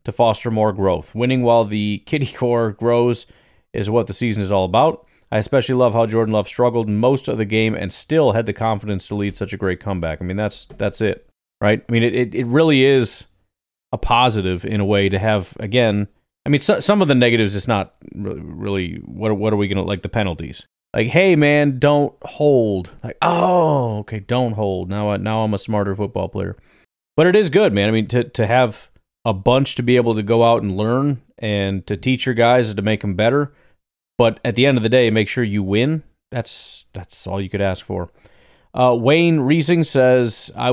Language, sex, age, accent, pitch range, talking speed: English, male, 30-49, American, 105-125 Hz, 220 wpm